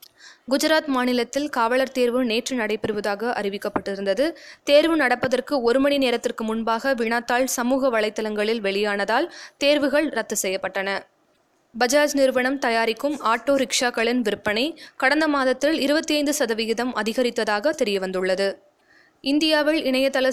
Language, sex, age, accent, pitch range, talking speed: Tamil, female, 20-39, native, 225-280 Hz, 95 wpm